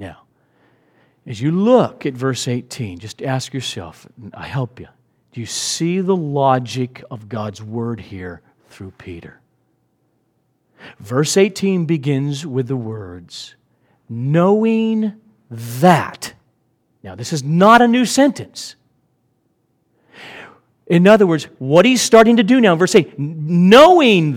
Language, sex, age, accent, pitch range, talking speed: English, male, 40-59, American, 125-210 Hz, 125 wpm